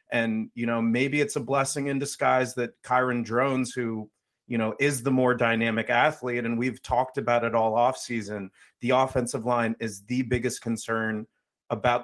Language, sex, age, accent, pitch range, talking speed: English, male, 30-49, American, 115-130 Hz, 175 wpm